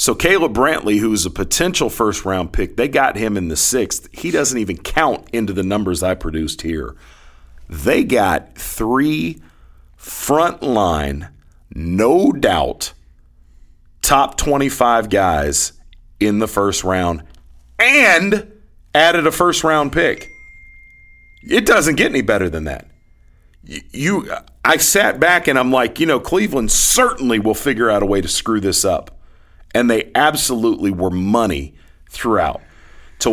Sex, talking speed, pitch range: male, 135 wpm, 80-115 Hz